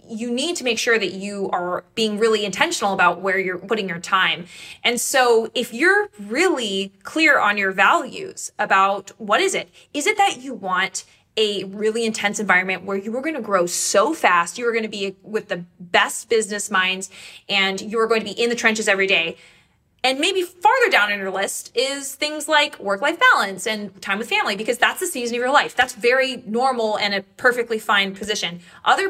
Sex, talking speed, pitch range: female, 200 wpm, 195-260 Hz